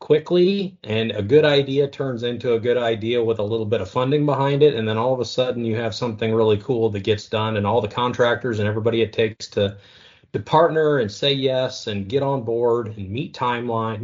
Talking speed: 225 wpm